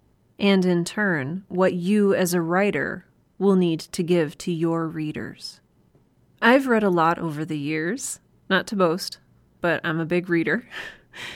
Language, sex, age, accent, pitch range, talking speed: English, female, 30-49, American, 165-195 Hz, 160 wpm